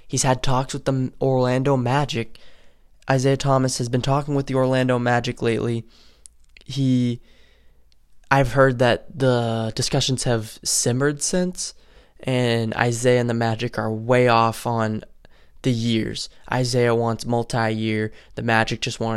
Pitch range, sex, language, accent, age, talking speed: 115-135 Hz, male, English, American, 10-29, 140 wpm